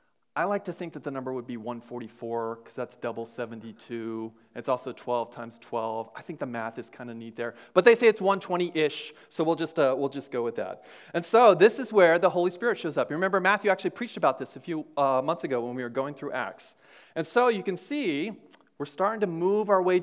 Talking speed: 245 wpm